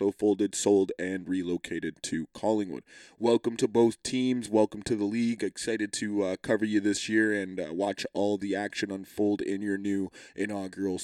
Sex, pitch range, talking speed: male, 100-125 Hz, 175 wpm